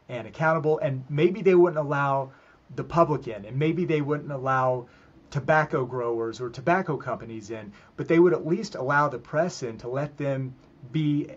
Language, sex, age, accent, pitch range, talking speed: English, male, 30-49, American, 130-155 Hz, 180 wpm